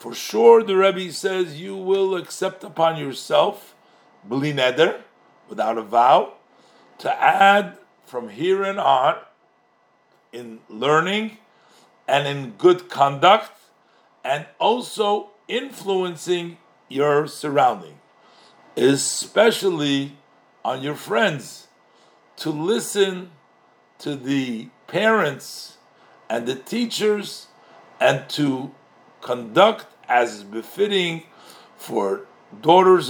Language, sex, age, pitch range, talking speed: English, male, 50-69, 140-190 Hz, 90 wpm